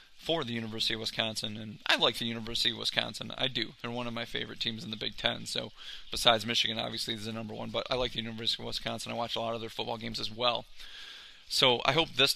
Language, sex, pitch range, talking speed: English, male, 115-120 Hz, 255 wpm